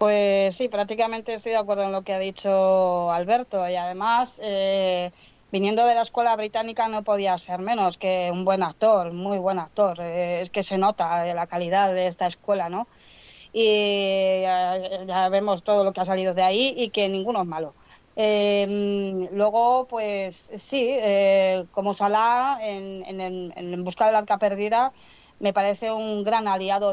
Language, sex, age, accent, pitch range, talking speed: Spanish, female, 20-39, Spanish, 185-220 Hz, 170 wpm